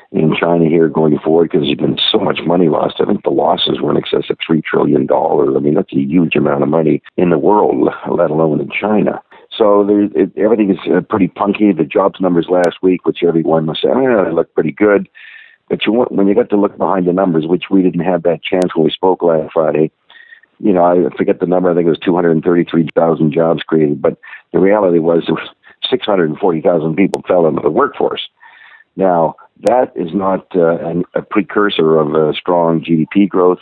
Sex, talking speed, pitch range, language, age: male, 205 wpm, 80-90 Hz, English, 50-69